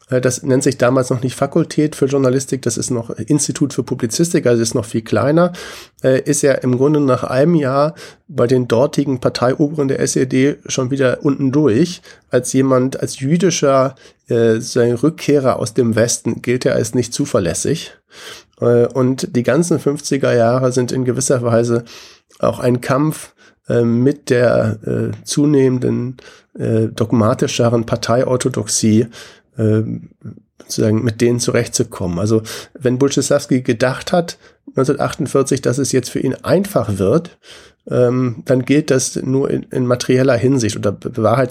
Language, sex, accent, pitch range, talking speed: German, male, German, 120-140 Hz, 145 wpm